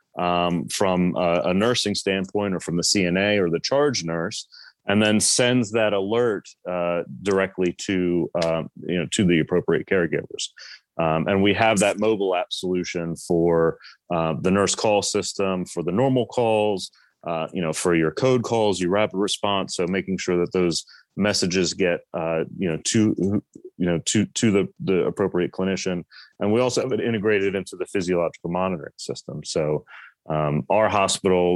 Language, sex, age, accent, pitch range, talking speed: English, male, 30-49, American, 85-100 Hz, 175 wpm